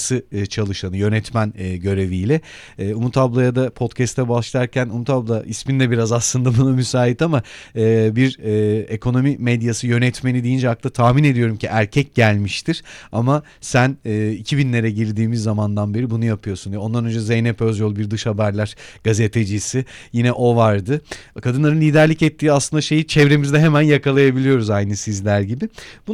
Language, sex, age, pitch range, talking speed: Turkish, male, 40-59, 110-145 Hz, 135 wpm